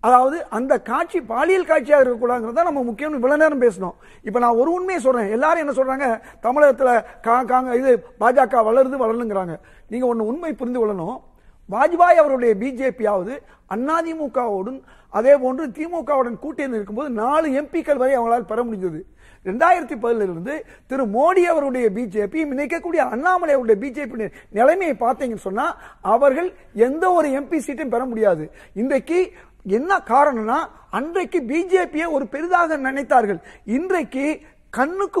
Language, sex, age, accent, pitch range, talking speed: Tamil, male, 50-69, native, 235-315 Hz, 85 wpm